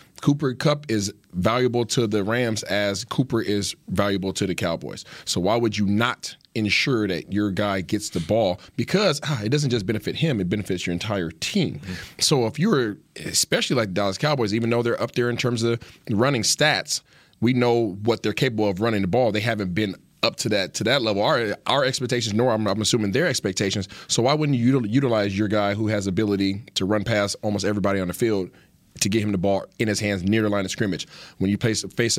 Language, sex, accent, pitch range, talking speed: English, male, American, 105-130 Hz, 220 wpm